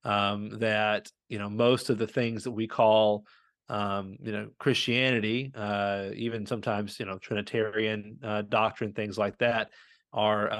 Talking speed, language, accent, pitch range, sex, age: 155 wpm, English, American, 105-120 Hz, male, 30-49